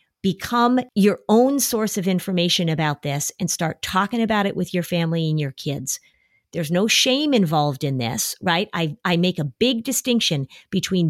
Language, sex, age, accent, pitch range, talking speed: English, female, 40-59, American, 165-215 Hz, 180 wpm